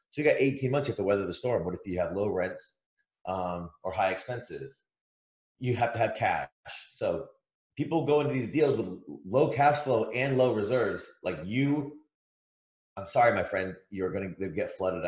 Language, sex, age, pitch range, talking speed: English, male, 30-49, 95-135 Hz, 200 wpm